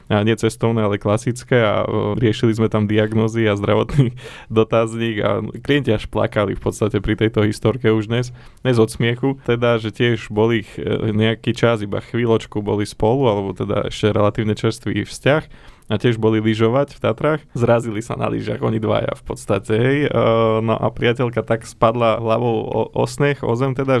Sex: male